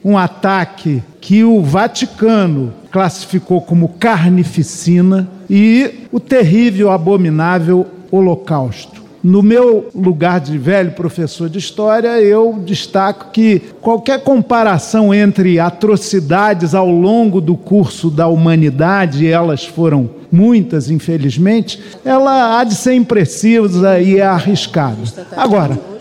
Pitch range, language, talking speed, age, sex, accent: 170-225 Hz, Portuguese, 110 wpm, 50-69, male, Brazilian